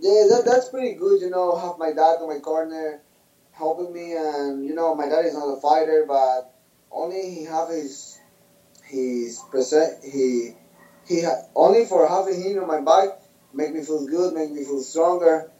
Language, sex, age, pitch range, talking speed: English, male, 20-39, 140-165 Hz, 190 wpm